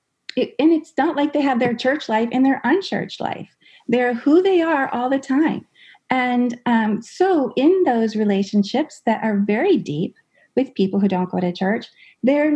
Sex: female